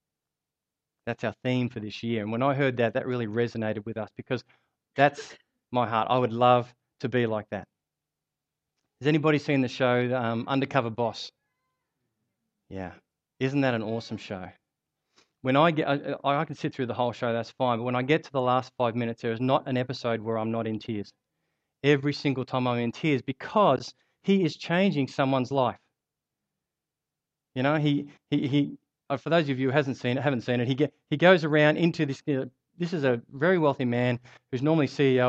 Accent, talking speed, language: Australian, 190 wpm, English